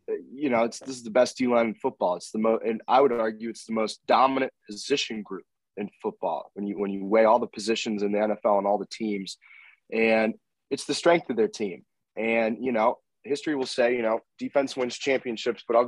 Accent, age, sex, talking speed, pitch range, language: American, 20-39, male, 230 wpm, 110-130 Hz, English